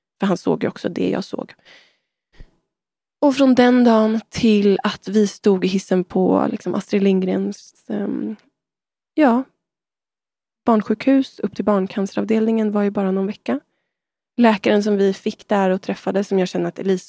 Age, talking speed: 20-39, 150 wpm